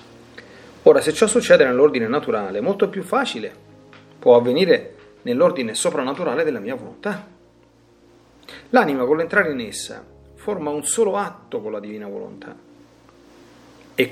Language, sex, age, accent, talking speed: Italian, male, 40-59, native, 125 wpm